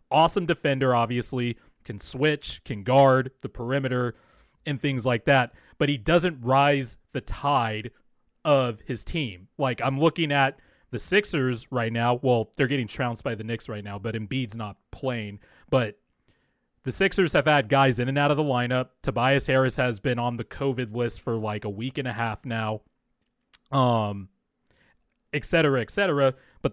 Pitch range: 120-145 Hz